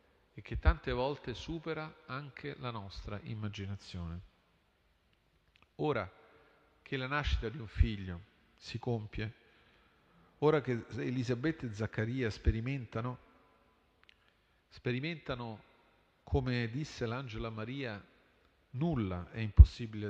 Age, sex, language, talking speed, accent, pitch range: 40-59, male, Italian, 95 wpm, native, 90-120 Hz